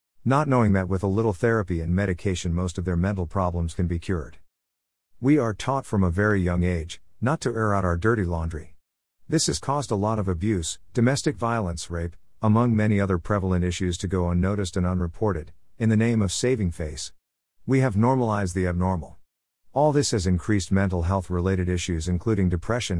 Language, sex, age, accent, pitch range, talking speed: English, male, 50-69, American, 90-110 Hz, 190 wpm